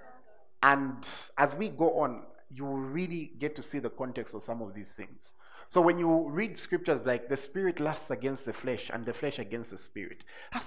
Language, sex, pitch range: English, male, 120-165 Hz